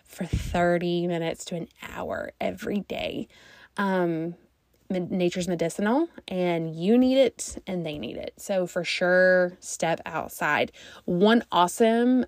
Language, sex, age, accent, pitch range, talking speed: English, female, 20-39, American, 175-210 Hz, 125 wpm